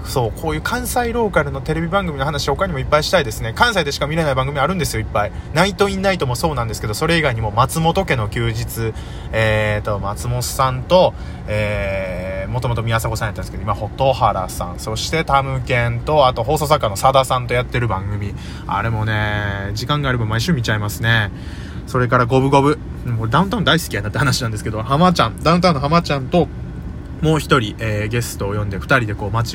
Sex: male